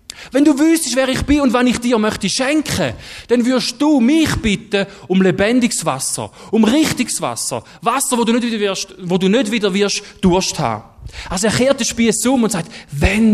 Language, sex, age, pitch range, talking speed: German, male, 30-49, 180-235 Hz, 185 wpm